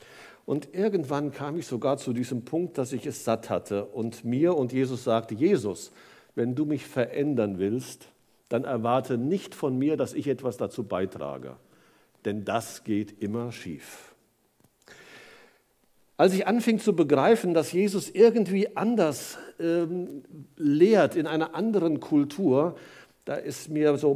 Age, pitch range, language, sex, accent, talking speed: 50-69, 130-185 Hz, German, male, German, 145 wpm